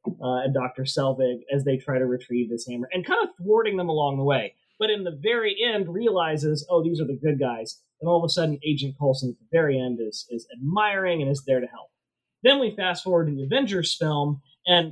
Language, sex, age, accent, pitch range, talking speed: English, male, 30-49, American, 140-195 Hz, 235 wpm